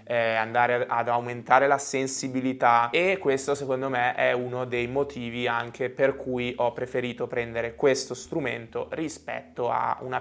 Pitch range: 120-140 Hz